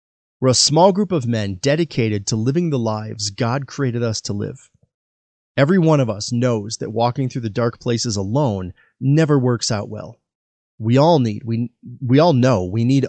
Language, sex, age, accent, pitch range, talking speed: English, male, 30-49, American, 115-145 Hz, 190 wpm